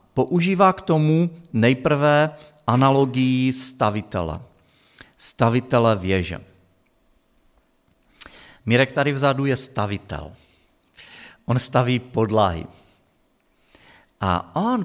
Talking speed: 75 wpm